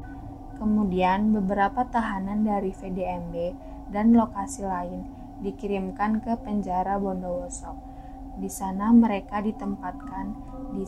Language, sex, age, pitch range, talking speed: Indonesian, female, 20-39, 185-220 Hz, 95 wpm